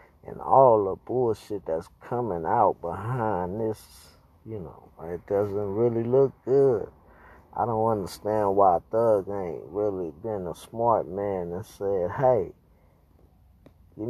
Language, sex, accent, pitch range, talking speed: English, male, American, 85-110 Hz, 130 wpm